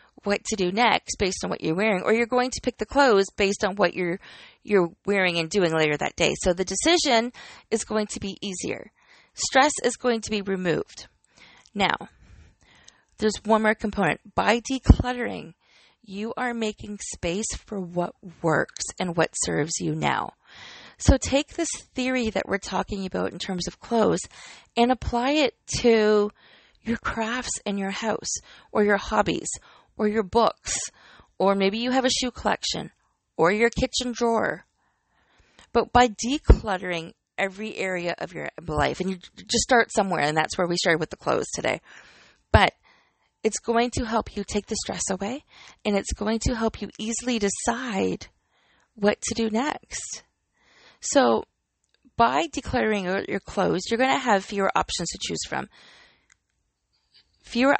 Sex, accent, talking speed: female, American, 165 wpm